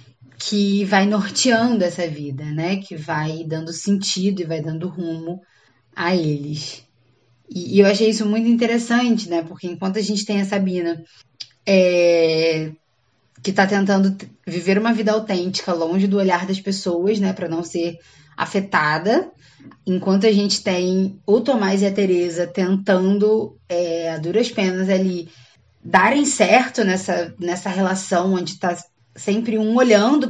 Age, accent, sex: 10-29, Brazilian, female